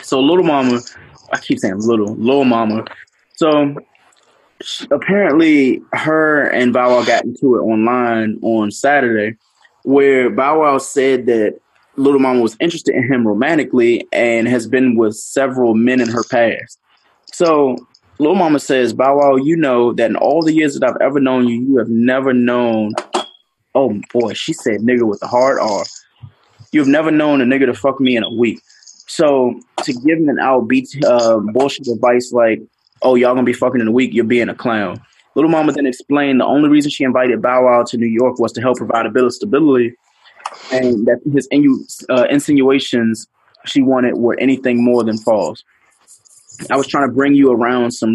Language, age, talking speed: English, 20-39, 185 wpm